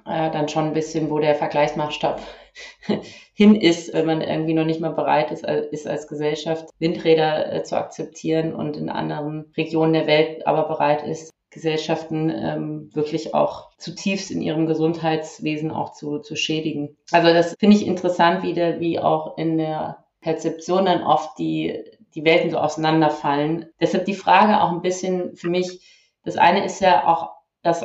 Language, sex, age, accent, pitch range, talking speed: German, female, 30-49, German, 155-175 Hz, 170 wpm